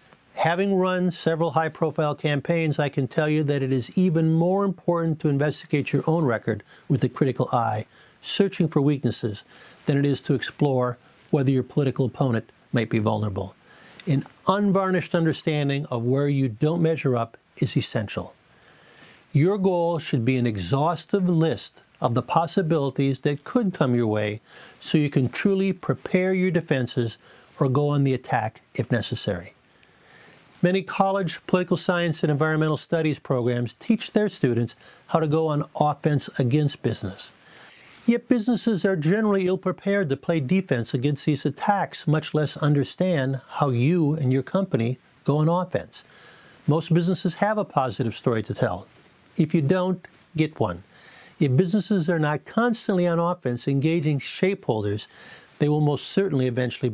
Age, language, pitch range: 50-69, English, 130-175 Hz